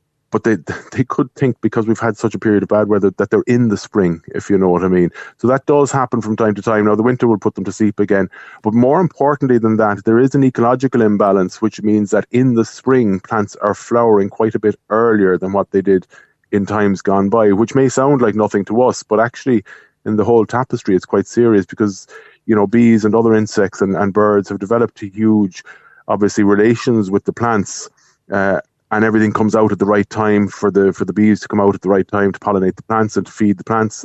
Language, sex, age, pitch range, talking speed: English, male, 30-49, 100-120 Hz, 240 wpm